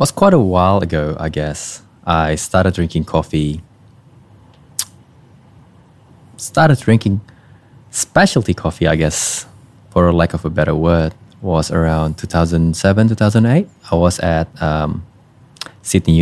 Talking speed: 105 wpm